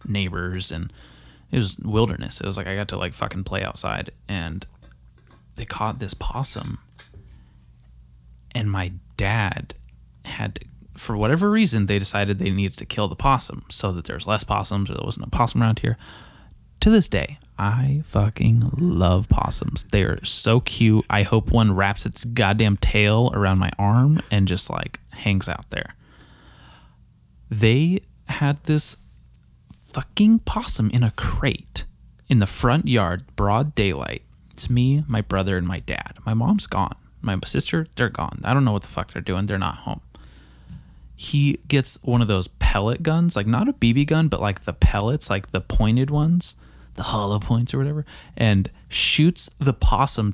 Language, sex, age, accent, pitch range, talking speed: English, male, 20-39, American, 90-125 Hz, 170 wpm